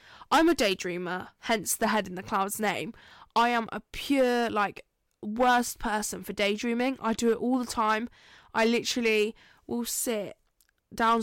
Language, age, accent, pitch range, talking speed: English, 10-29, British, 205-235 Hz, 160 wpm